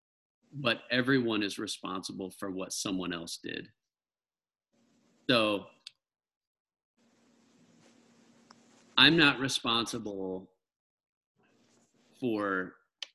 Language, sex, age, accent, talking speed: English, male, 40-59, American, 65 wpm